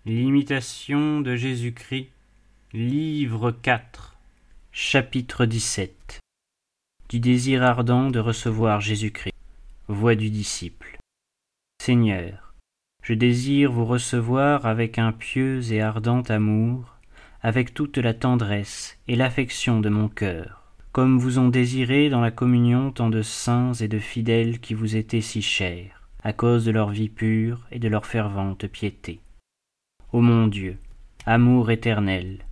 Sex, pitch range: male, 105-125 Hz